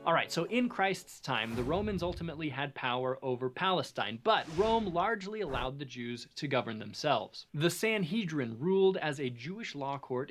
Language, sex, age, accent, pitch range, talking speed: English, male, 30-49, American, 130-180 Hz, 170 wpm